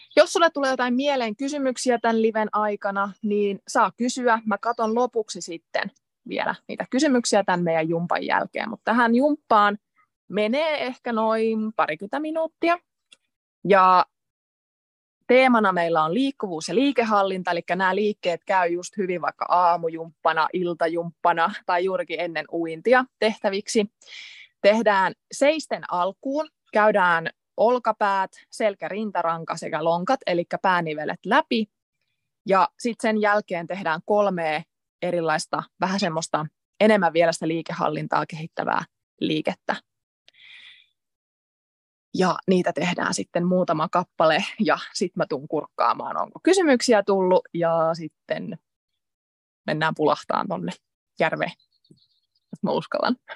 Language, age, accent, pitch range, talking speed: Finnish, 20-39, native, 175-245 Hz, 115 wpm